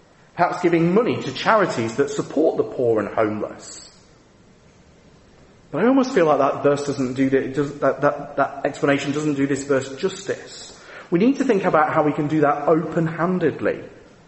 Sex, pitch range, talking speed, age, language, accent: male, 135-180 Hz, 170 wpm, 30-49, English, British